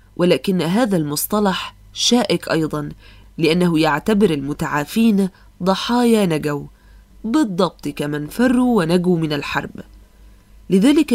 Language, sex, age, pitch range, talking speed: Arabic, female, 20-39, 155-210 Hz, 90 wpm